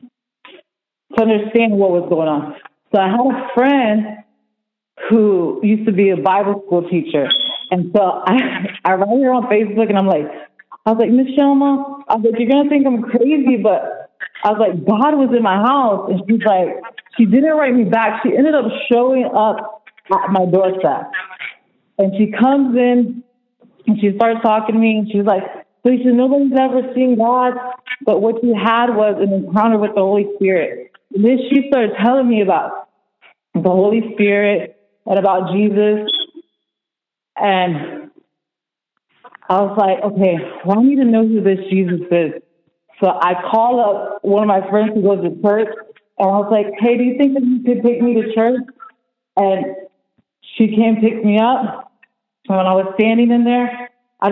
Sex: female